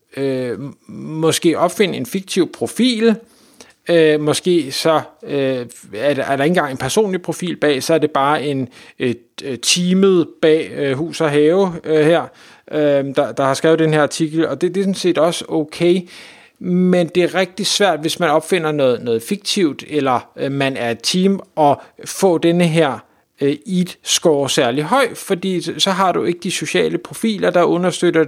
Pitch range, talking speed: 145-180 Hz, 155 wpm